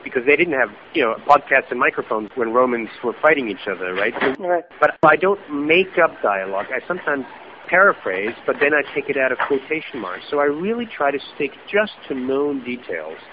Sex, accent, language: male, American, English